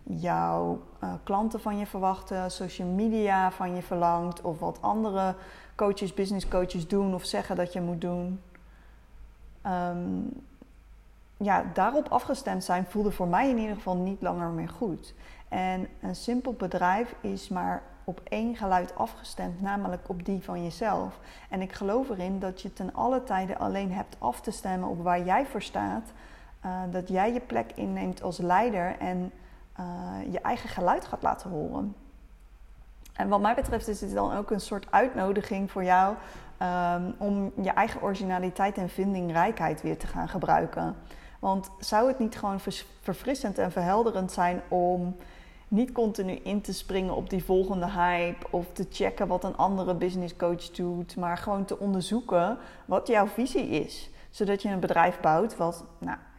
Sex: female